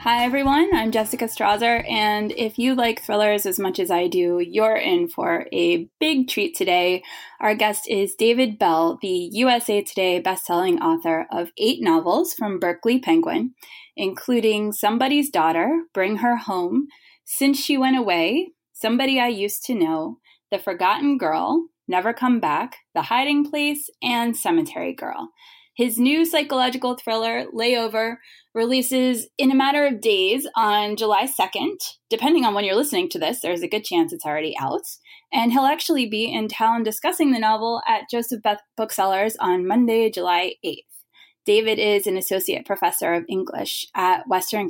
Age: 20-39